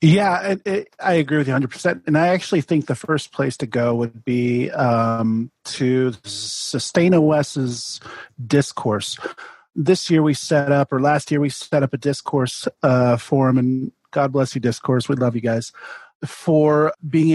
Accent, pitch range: American, 135-160 Hz